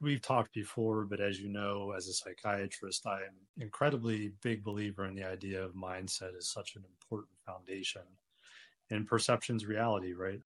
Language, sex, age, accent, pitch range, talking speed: English, male, 30-49, American, 95-115 Hz, 160 wpm